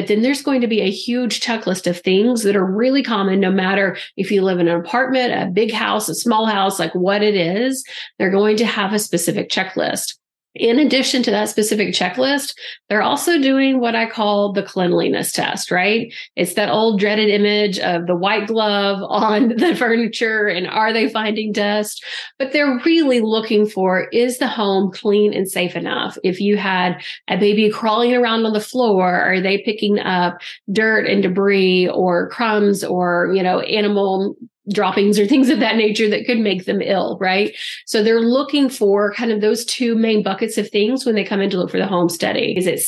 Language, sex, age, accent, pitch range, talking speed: English, female, 40-59, American, 190-230 Hz, 200 wpm